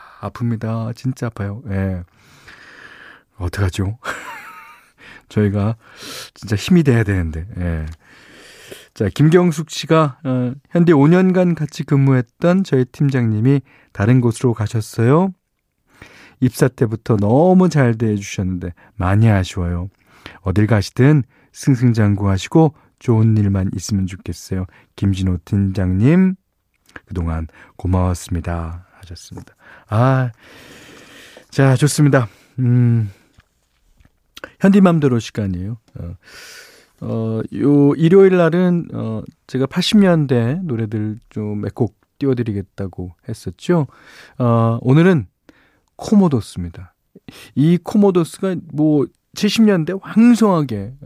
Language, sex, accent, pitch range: Korean, male, native, 100-150 Hz